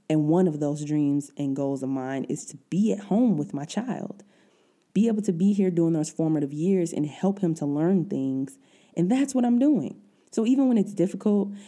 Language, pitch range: English, 150-200 Hz